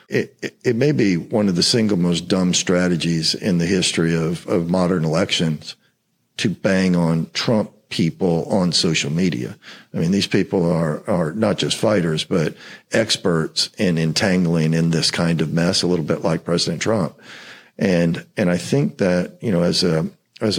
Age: 50-69